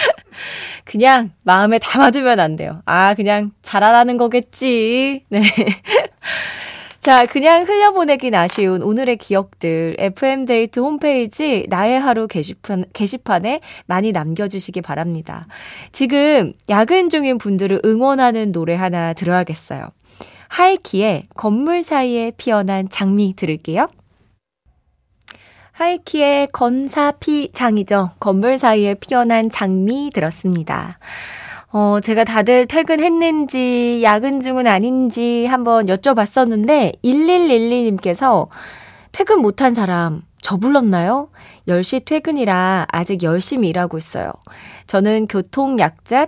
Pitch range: 190-275 Hz